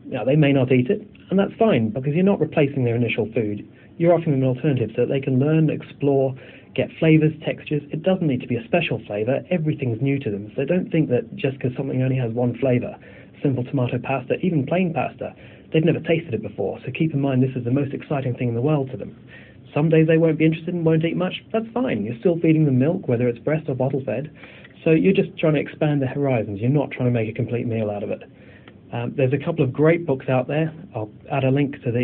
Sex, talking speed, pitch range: male, 255 wpm, 125-150 Hz